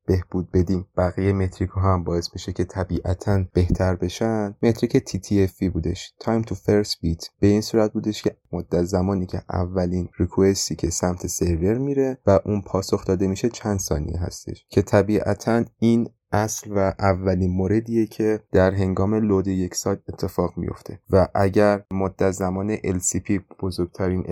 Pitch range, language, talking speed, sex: 90-105 Hz, Persian, 155 wpm, male